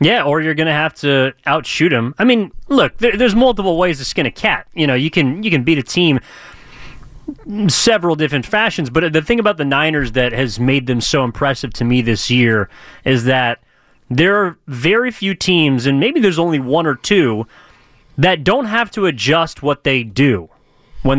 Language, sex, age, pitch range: English, male, 30-49, 140-185 Hz